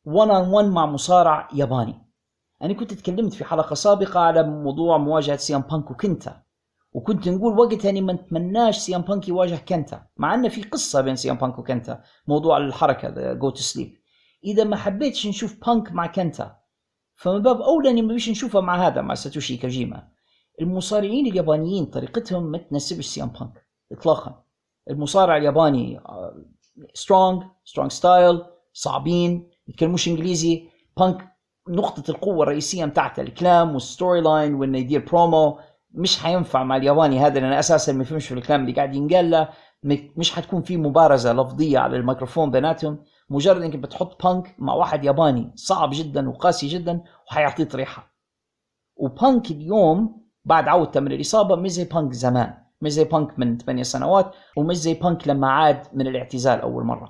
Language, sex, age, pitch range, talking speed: Arabic, male, 40-59, 140-185 Hz, 150 wpm